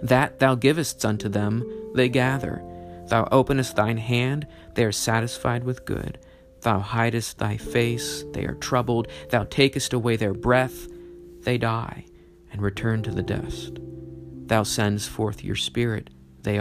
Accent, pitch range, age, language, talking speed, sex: American, 105-130 Hz, 40-59, English, 150 wpm, male